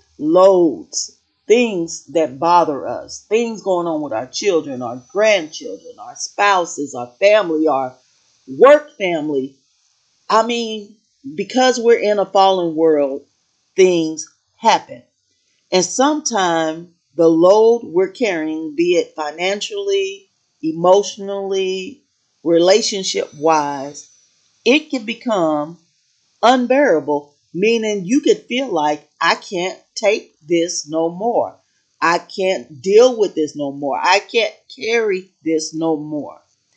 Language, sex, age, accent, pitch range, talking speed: English, female, 40-59, American, 155-215 Hz, 115 wpm